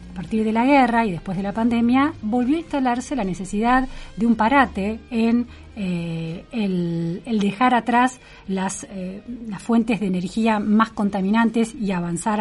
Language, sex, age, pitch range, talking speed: Spanish, female, 40-59, 185-245 Hz, 165 wpm